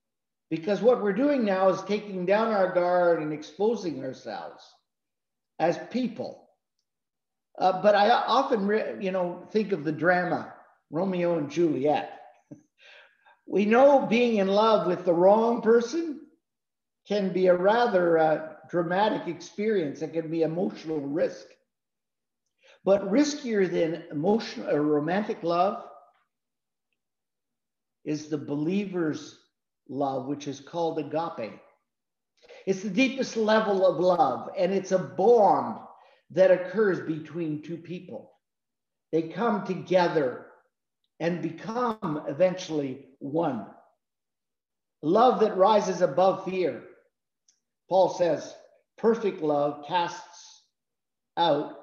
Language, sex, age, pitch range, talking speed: English, male, 50-69, 170-230 Hz, 110 wpm